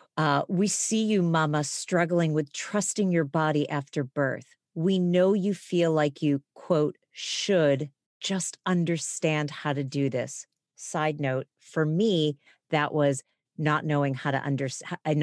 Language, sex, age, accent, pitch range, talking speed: English, female, 40-59, American, 140-165 Hz, 140 wpm